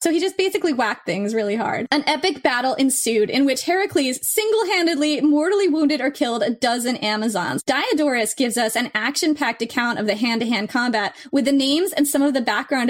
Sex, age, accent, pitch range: female, 20-39, American, 230-295 Hz